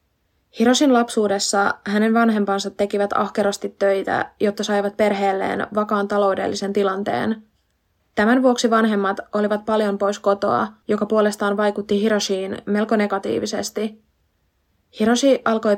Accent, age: native, 20-39